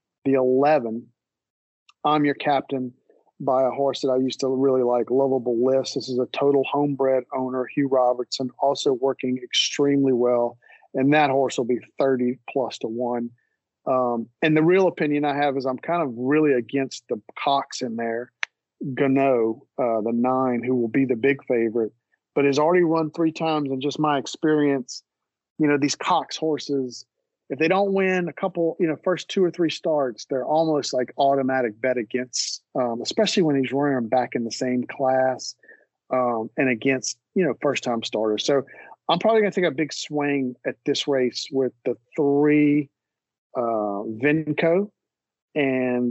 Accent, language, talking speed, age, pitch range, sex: American, English, 175 wpm, 40-59, 125-145 Hz, male